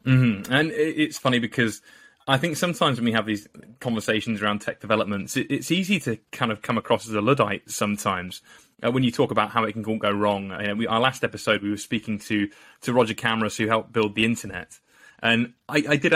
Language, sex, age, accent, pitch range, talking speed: English, male, 20-39, British, 110-135 Hz, 215 wpm